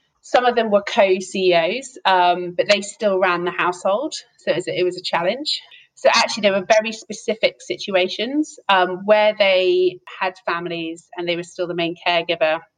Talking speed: 170 wpm